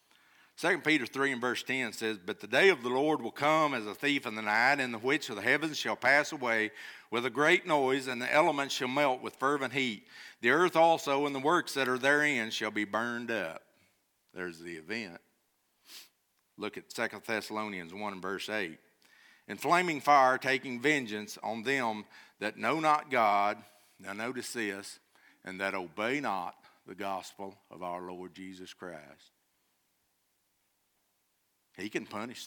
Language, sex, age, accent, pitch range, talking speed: English, male, 50-69, American, 105-140 Hz, 175 wpm